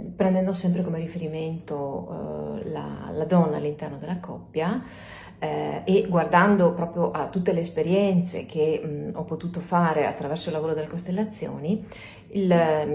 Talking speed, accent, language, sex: 140 wpm, native, Italian, female